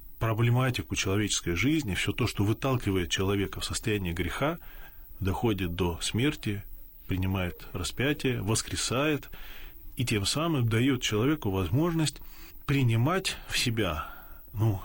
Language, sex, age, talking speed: Russian, male, 20-39, 110 wpm